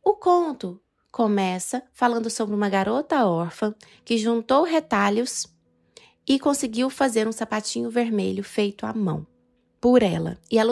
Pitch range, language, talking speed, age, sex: 195-265 Hz, Portuguese, 135 wpm, 20-39, female